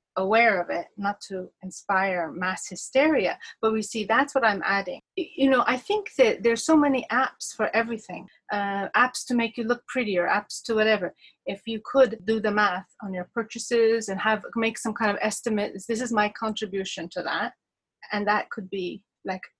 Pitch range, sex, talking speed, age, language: 190-230 Hz, female, 195 wpm, 30-49, English